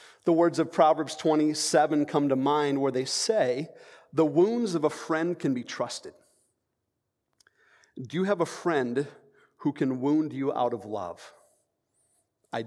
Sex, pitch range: male, 135-180 Hz